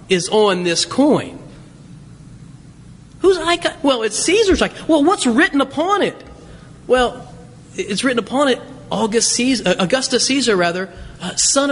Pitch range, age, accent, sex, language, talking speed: 175-270 Hz, 30-49, American, male, English, 140 wpm